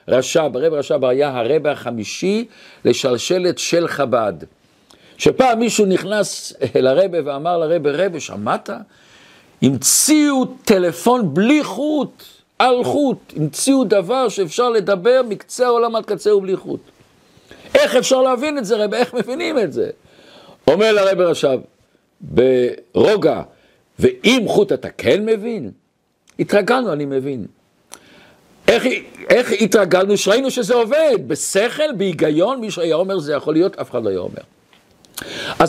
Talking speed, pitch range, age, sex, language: 125 wpm, 175-245 Hz, 50-69, male, Hebrew